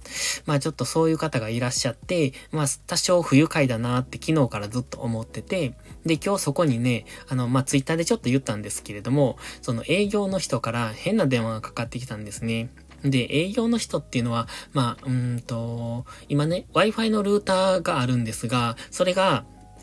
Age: 20-39